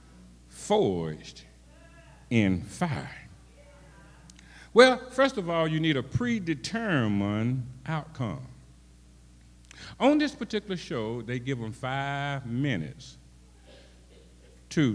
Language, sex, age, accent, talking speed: English, male, 50-69, American, 90 wpm